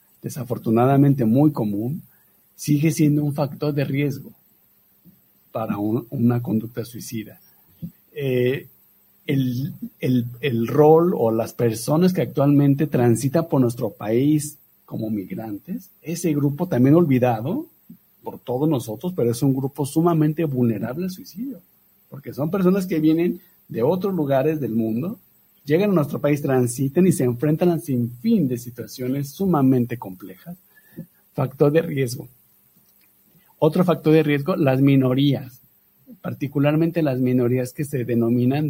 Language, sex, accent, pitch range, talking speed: Spanish, male, Mexican, 120-155 Hz, 125 wpm